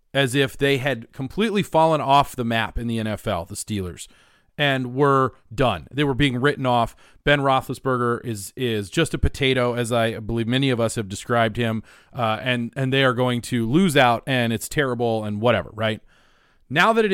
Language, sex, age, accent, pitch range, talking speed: English, male, 40-59, American, 115-180 Hz, 195 wpm